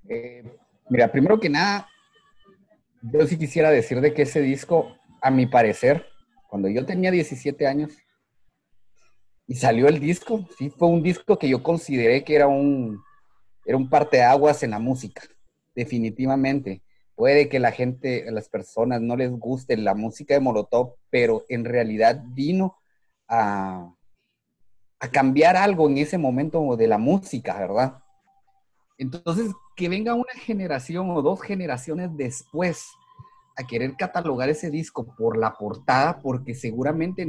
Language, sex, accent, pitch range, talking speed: Spanish, male, Mexican, 120-165 Hz, 145 wpm